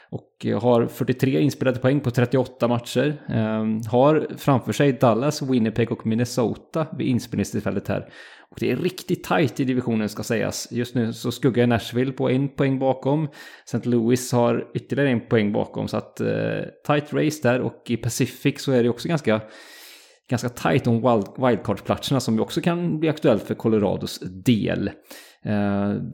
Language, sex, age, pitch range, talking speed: English, male, 20-39, 110-130 Hz, 165 wpm